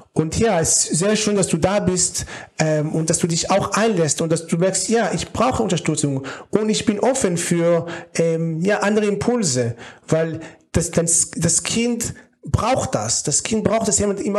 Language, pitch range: German, 155-190 Hz